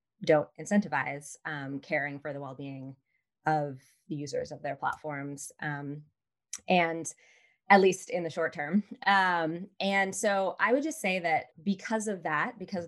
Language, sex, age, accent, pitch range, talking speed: English, female, 20-39, American, 150-190 Hz, 155 wpm